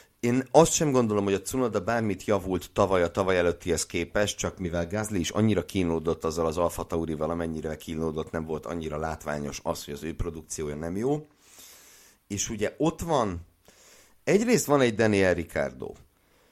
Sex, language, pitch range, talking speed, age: male, Hungarian, 85-110 Hz, 165 wpm, 50-69